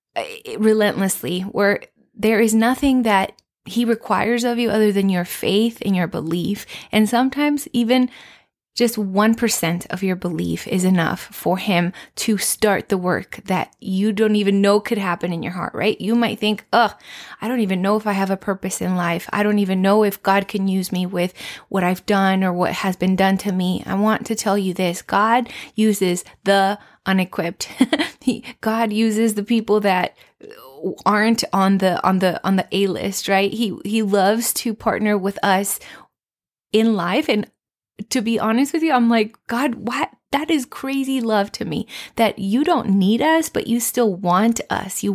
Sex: female